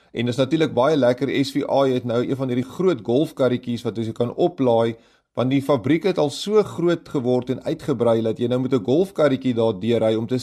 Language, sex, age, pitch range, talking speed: English, male, 30-49, 125-160 Hz, 225 wpm